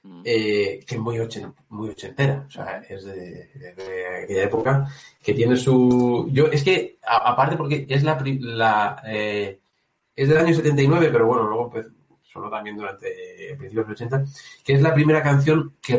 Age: 30-49